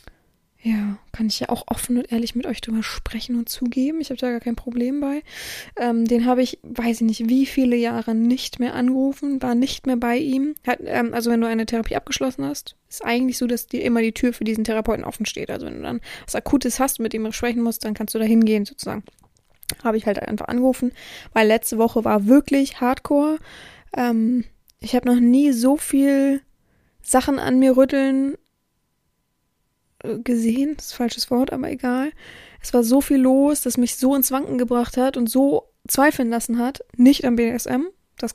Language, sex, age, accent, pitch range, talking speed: German, female, 20-39, German, 230-265 Hz, 205 wpm